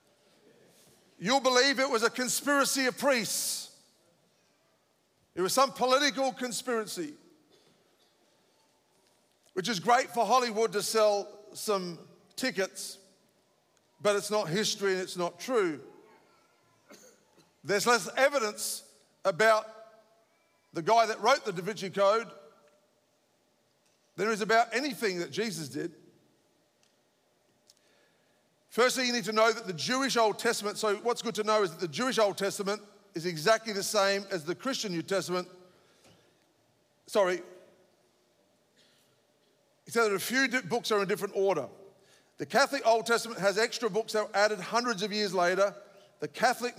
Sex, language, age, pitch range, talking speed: male, English, 50-69, 195-230 Hz, 140 wpm